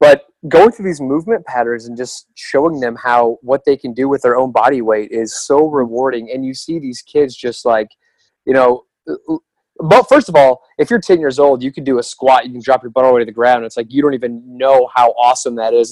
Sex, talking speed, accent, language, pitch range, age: male, 255 wpm, American, English, 125-150 Hz, 20-39